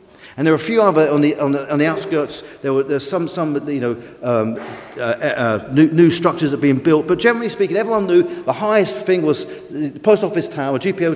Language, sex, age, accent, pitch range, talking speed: English, male, 40-59, British, 135-195 Hz, 240 wpm